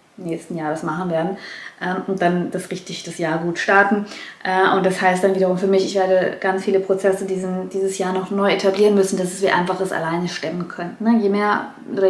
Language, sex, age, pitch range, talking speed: German, female, 20-39, 180-215 Hz, 210 wpm